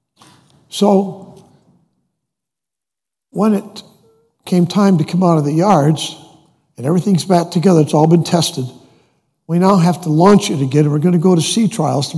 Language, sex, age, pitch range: English, male, 60-79, 160-200 Hz